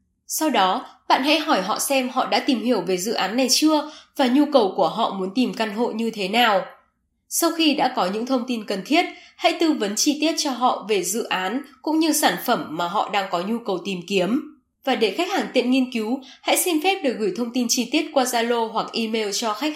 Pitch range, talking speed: 205-280 Hz, 245 wpm